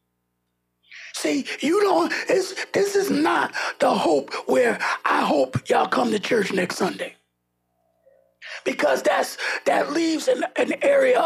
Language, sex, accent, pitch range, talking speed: English, male, American, 235-375 Hz, 130 wpm